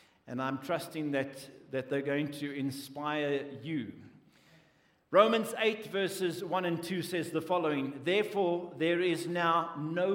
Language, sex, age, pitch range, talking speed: English, male, 60-79, 135-185 Hz, 140 wpm